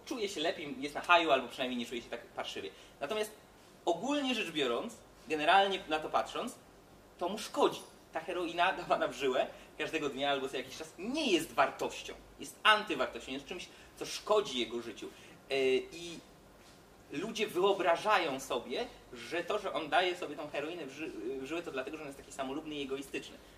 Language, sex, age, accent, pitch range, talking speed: Polish, male, 20-39, native, 140-210 Hz, 175 wpm